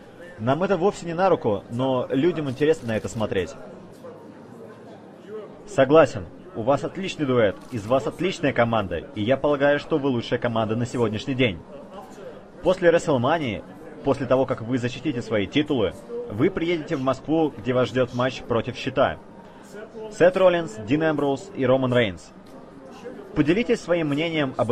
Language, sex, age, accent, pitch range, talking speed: Russian, male, 30-49, native, 125-165 Hz, 150 wpm